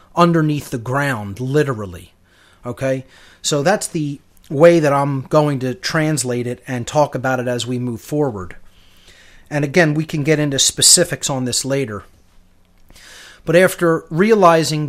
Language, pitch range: English, 125-155 Hz